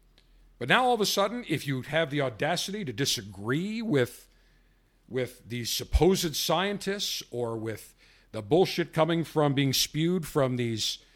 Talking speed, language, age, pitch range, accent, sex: 150 wpm, English, 50-69, 135-190 Hz, American, male